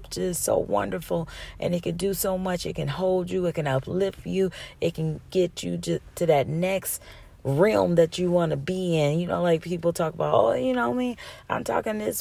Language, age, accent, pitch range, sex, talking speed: English, 30-49, American, 135-175 Hz, female, 220 wpm